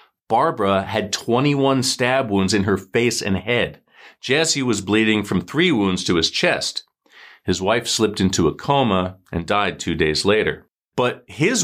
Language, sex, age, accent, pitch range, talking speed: English, male, 40-59, American, 100-135 Hz, 165 wpm